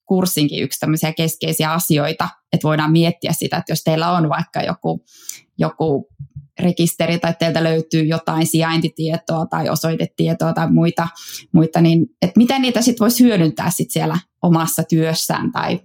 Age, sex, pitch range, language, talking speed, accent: 20-39, female, 160-190 Hz, Finnish, 145 wpm, native